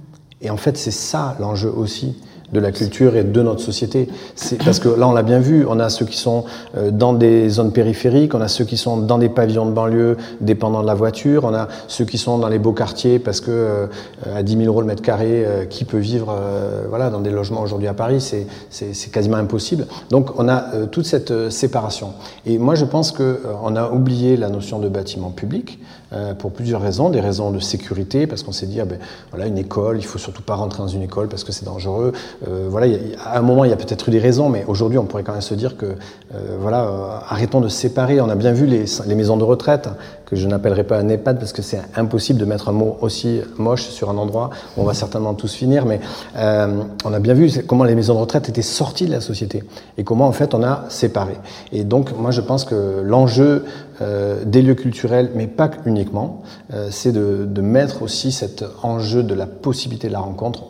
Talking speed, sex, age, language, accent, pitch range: 245 wpm, male, 40-59, French, French, 105-125 Hz